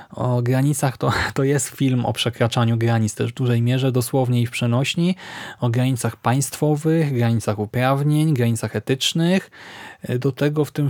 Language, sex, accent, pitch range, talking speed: Polish, male, native, 120-145 Hz, 155 wpm